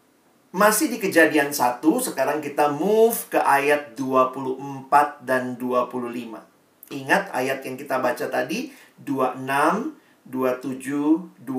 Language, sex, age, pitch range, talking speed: Indonesian, male, 40-59, 145-195 Hz, 105 wpm